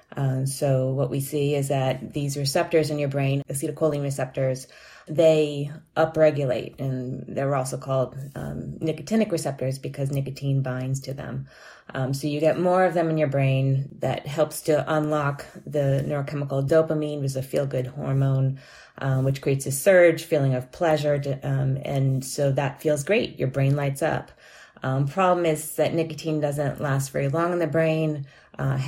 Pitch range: 135-155 Hz